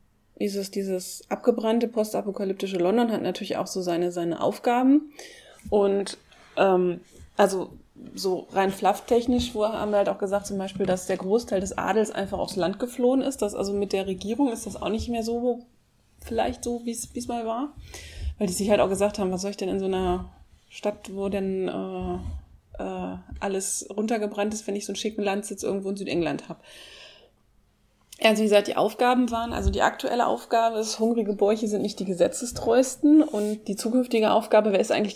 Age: 20-39